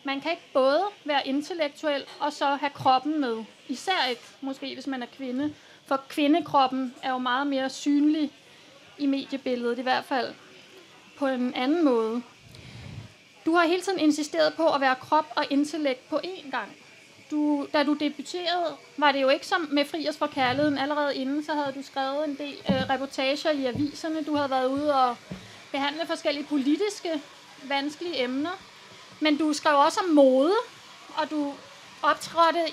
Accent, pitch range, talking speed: native, 270-315 Hz, 170 wpm